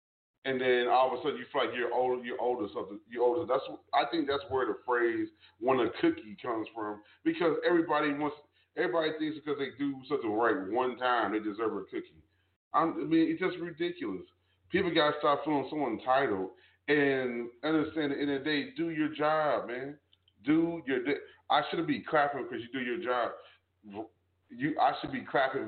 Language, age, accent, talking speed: English, 30-49, American, 195 wpm